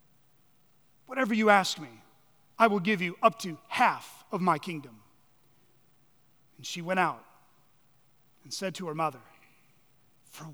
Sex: male